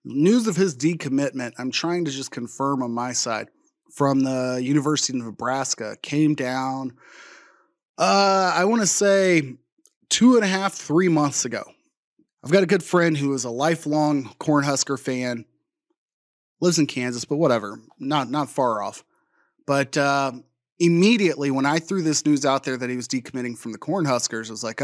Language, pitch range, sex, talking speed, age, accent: English, 130-175 Hz, male, 170 wpm, 30-49, American